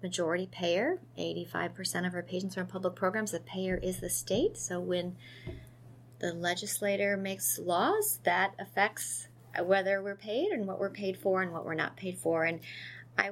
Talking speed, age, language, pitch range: 175 wpm, 30-49, English, 155-190 Hz